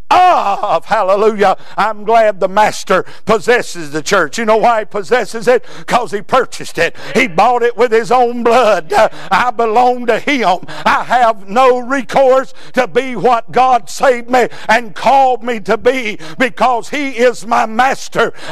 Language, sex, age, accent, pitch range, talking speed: English, male, 60-79, American, 230-325 Hz, 160 wpm